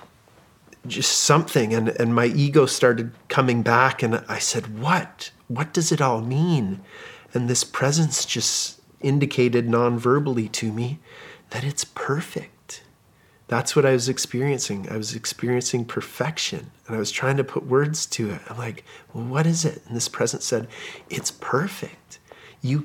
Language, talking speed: English, 155 wpm